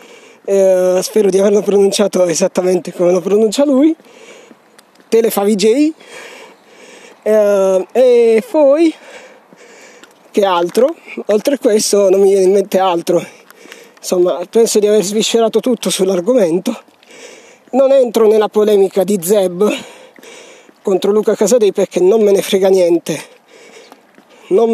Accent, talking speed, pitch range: native, 115 wpm, 190-275 Hz